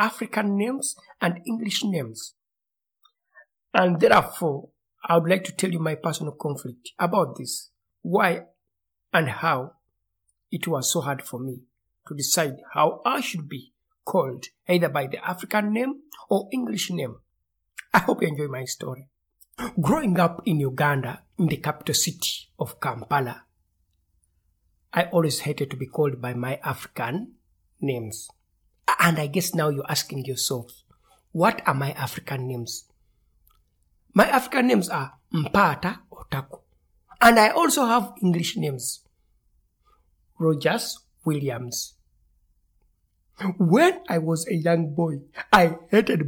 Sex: male